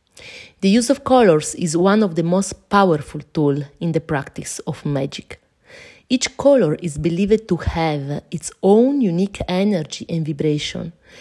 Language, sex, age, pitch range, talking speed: English, female, 30-49, 155-200 Hz, 150 wpm